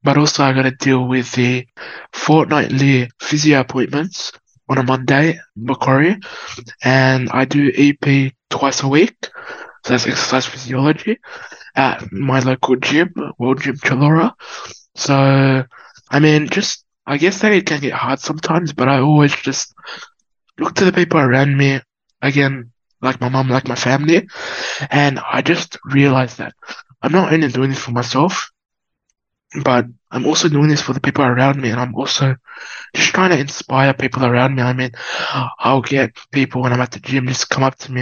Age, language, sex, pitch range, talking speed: 20-39, English, male, 130-150 Hz, 170 wpm